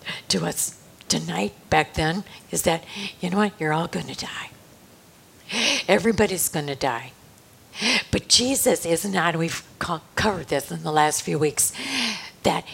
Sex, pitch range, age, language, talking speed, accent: female, 155-205 Hz, 50-69, English, 140 wpm, American